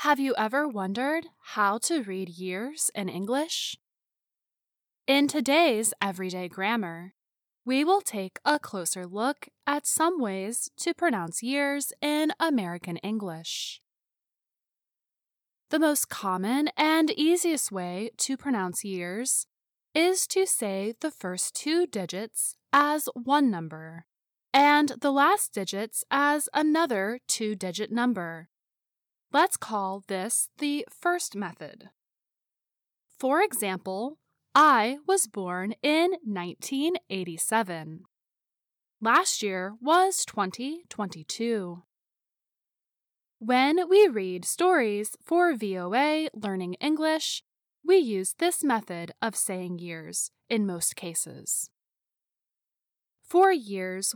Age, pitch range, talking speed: 10-29, 190-295 Hz, 105 wpm